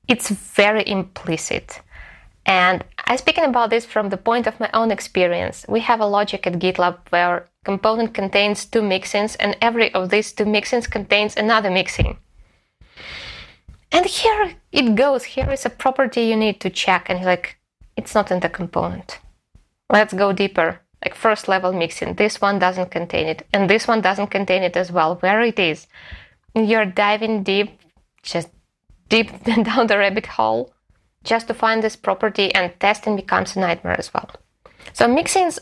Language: English